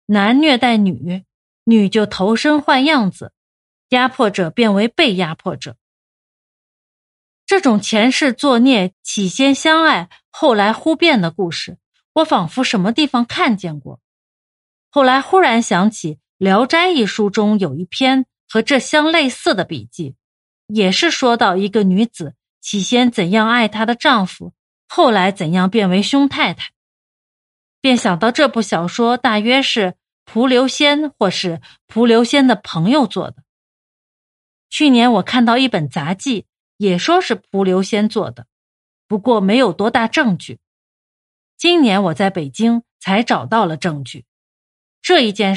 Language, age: Chinese, 30-49